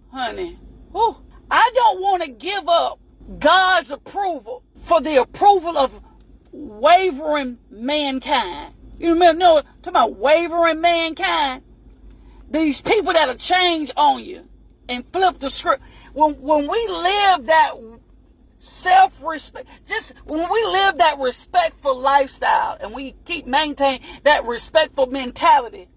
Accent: American